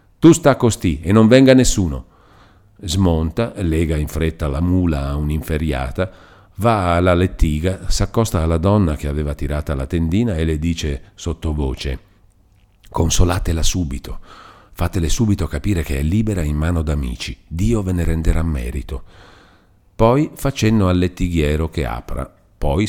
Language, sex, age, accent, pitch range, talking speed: Italian, male, 50-69, native, 75-100 Hz, 135 wpm